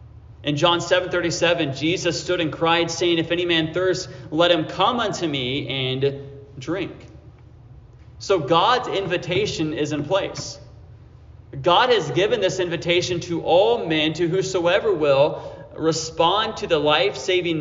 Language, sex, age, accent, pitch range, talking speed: English, male, 30-49, American, 130-175 Hz, 140 wpm